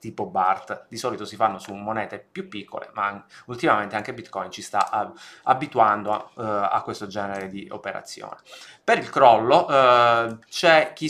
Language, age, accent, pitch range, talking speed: Italian, 20-39, native, 105-130 Hz, 155 wpm